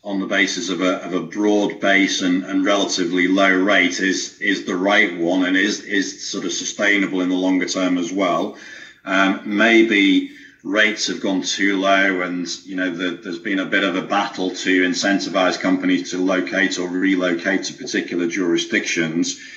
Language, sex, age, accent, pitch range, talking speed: English, male, 40-59, British, 95-115 Hz, 180 wpm